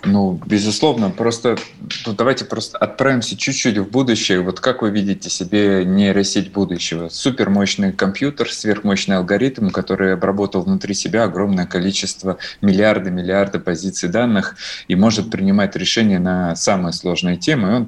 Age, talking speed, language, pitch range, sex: 20-39, 135 wpm, Russian, 90-105 Hz, male